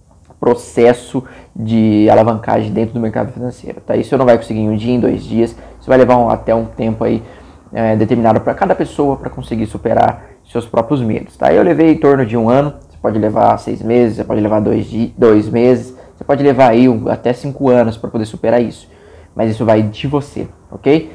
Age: 20-39